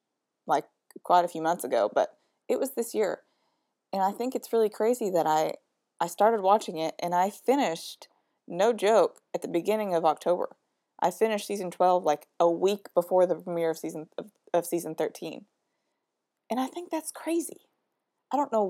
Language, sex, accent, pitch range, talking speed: English, female, American, 165-245 Hz, 180 wpm